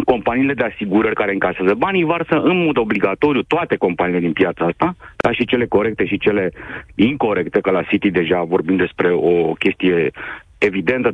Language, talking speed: Romanian, 165 wpm